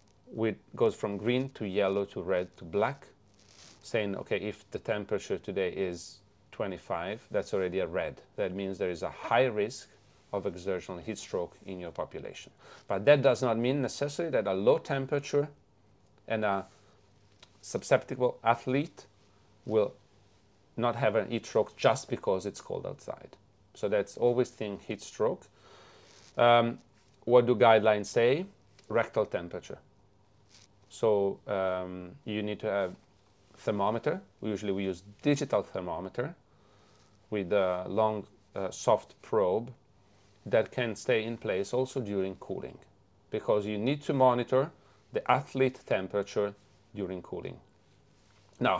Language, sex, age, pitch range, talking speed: English, male, 30-49, 100-125 Hz, 135 wpm